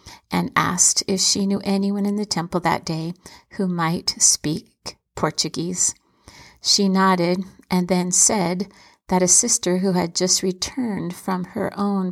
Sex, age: female, 50-69